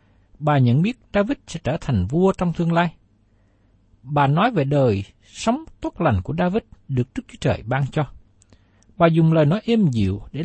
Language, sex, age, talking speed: Vietnamese, male, 60-79, 190 wpm